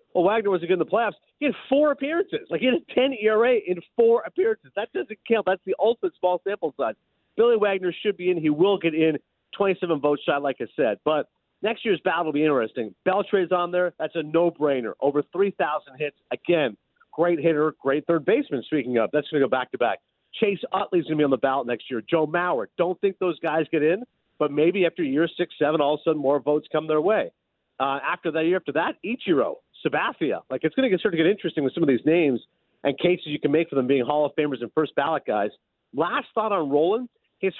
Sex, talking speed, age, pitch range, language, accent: male, 235 wpm, 50-69, 150-215 Hz, English, American